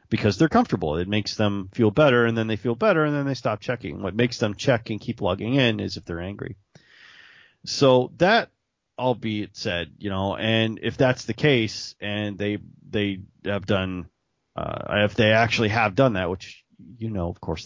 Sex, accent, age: male, American, 30-49